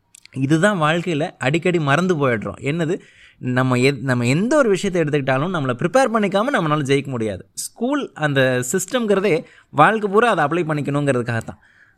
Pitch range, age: 125-180 Hz, 20-39